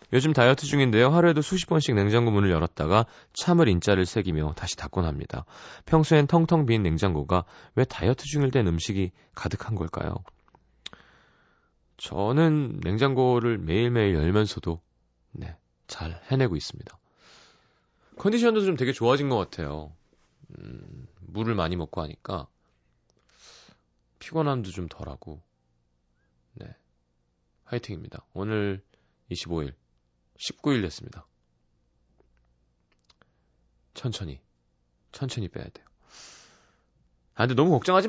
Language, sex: Korean, male